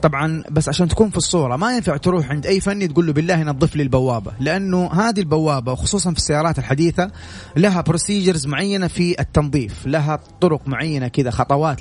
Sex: male